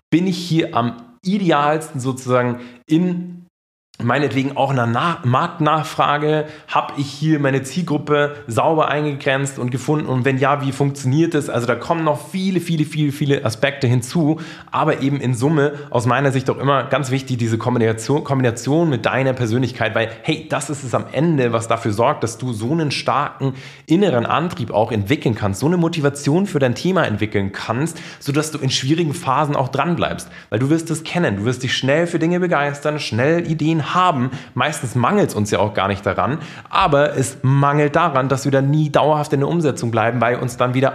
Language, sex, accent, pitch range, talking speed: German, male, German, 125-155 Hz, 190 wpm